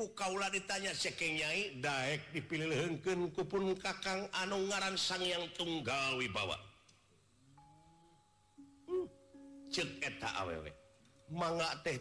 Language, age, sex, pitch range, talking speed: Indonesian, 50-69, male, 120-170 Hz, 100 wpm